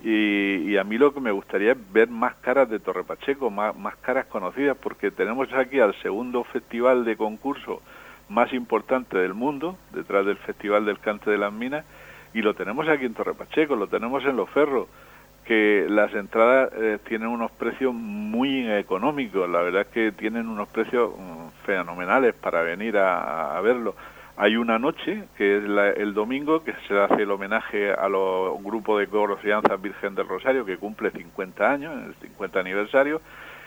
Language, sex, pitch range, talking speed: Spanish, male, 100-130 Hz, 180 wpm